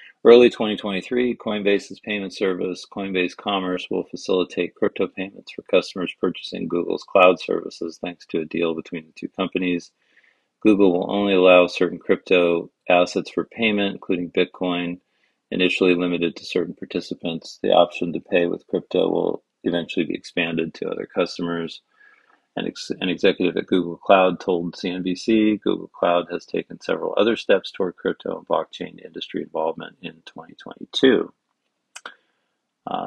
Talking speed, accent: 140 wpm, American